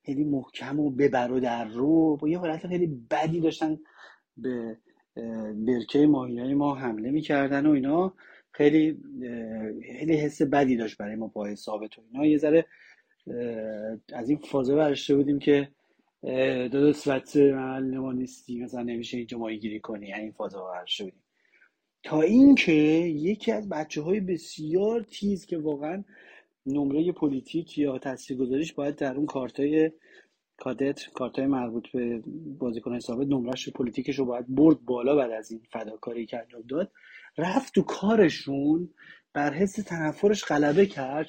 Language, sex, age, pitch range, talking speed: Persian, male, 30-49, 125-165 Hz, 135 wpm